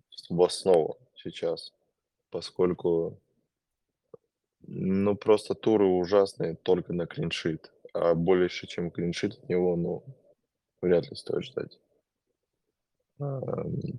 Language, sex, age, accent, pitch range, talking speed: Russian, male, 20-39, native, 85-110 Hz, 95 wpm